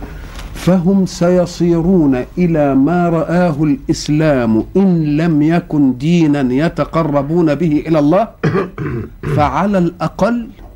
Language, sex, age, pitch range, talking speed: Arabic, male, 50-69, 135-185 Hz, 90 wpm